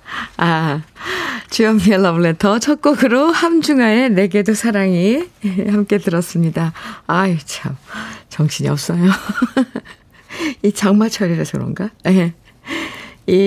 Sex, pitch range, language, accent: female, 155-215 Hz, Korean, native